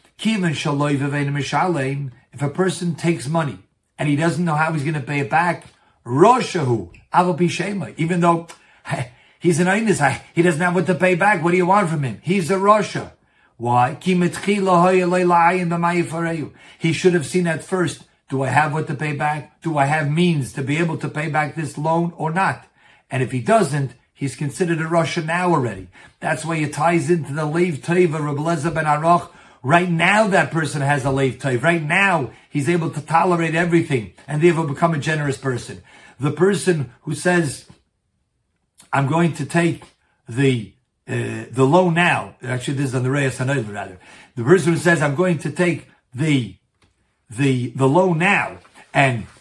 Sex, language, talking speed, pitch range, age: male, English, 165 wpm, 140-175 Hz, 50-69